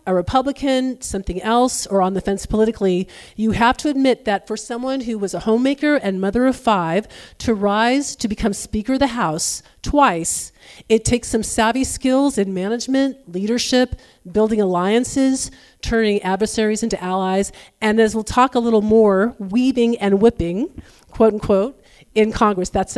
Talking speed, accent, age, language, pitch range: 160 wpm, American, 40-59, English, 195-245 Hz